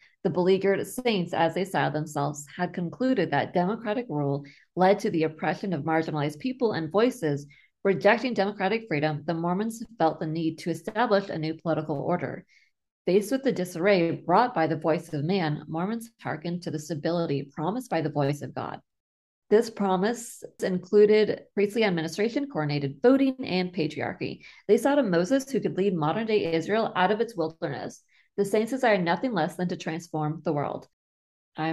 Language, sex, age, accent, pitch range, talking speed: English, female, 30-49, American, 155-200 Hz, 170 wpm